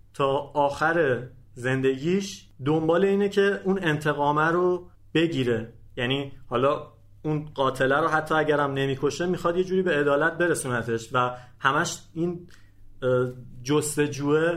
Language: Persian